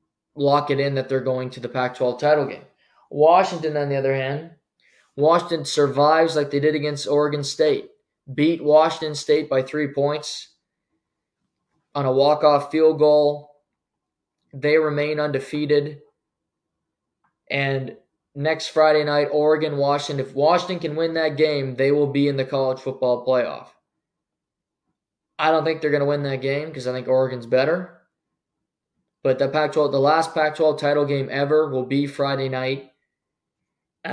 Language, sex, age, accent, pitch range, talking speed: English, male, 20-39, American, 135-155 Hz, 150 wpm